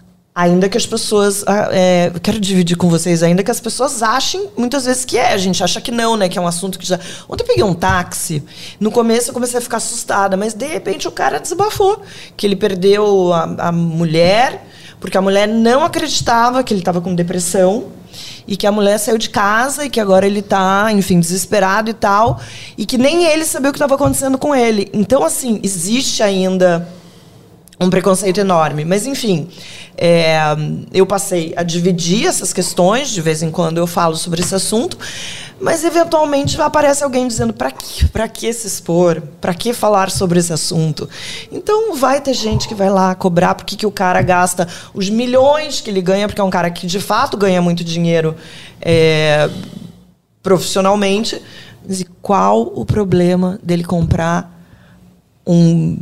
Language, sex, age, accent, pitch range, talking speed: Portuguese, female, 20-39, Brazilian, 175-220 Hz, 180 wpm